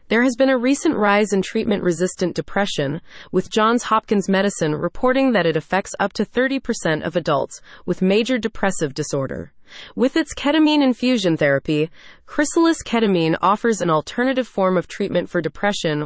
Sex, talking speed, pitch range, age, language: female, 155 wpm, 170-230 Hz, 30-49, English